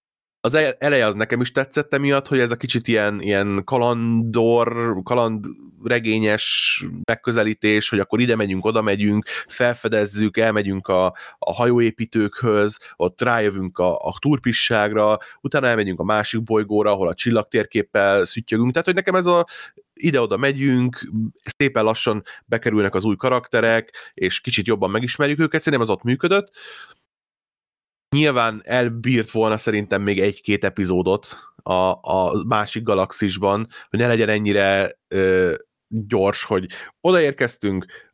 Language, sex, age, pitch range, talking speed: Hungarian, male, 30-49, 100-120 Hz, 130 wpm